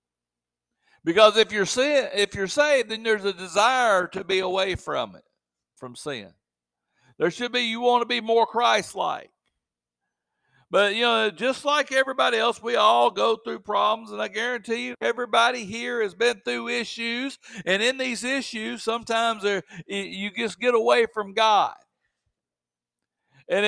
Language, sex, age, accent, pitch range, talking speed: English, male, 60-79, American, 190-240 Hz, 155 wpm